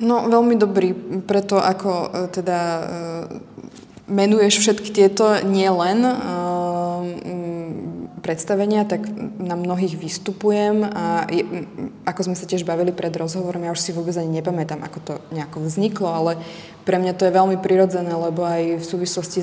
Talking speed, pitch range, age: 140 wpm, 170-190 Hz, 20-39